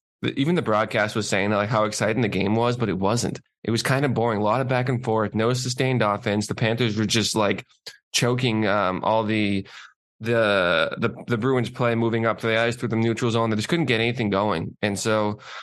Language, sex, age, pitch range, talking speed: English, male, 20-39, 105-115 Hz, 225 wpm